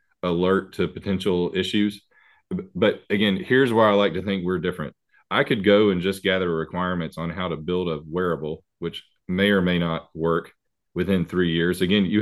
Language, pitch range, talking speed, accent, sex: English, 85-100 Hz, 185 wpm, American, male